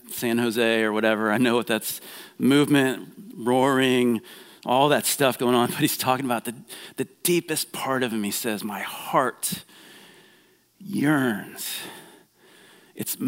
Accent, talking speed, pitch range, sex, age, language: American, 140 wpm, 110-145 Hz, male, 40-59, English